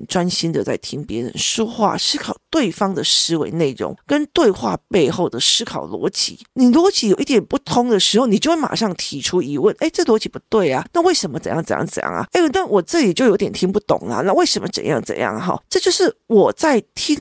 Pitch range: 195-330 Hz